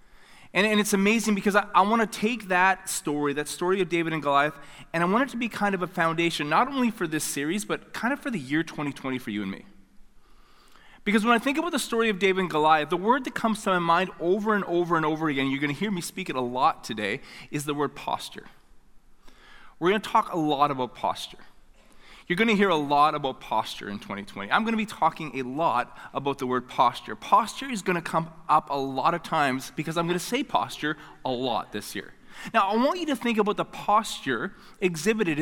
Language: English